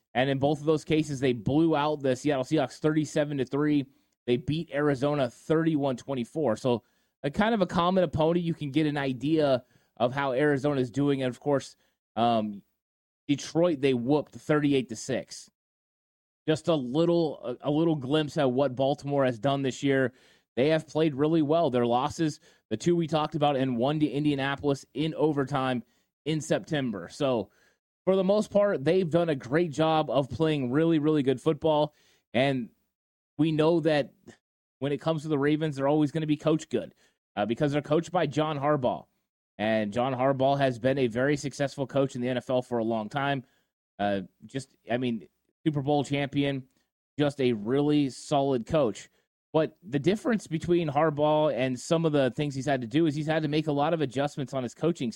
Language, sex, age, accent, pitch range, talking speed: English, male, 30-49, American, 130-155 Hz, 190 wpm